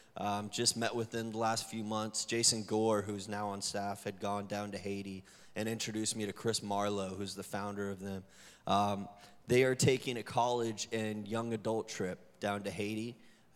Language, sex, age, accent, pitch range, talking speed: English, male, 20-39, American, 100-115 Hz, 195 wpm